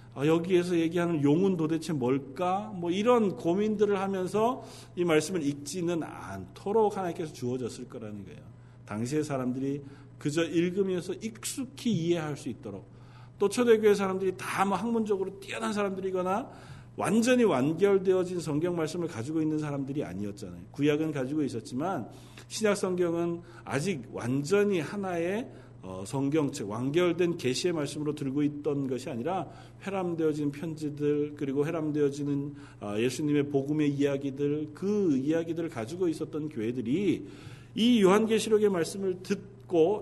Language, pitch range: Korean, 135-195 Hz